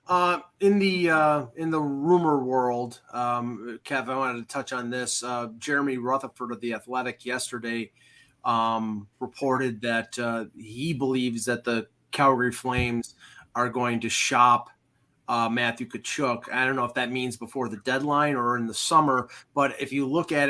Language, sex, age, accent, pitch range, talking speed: English, male, 30-49, American, 120-140 Hz, 170 wpm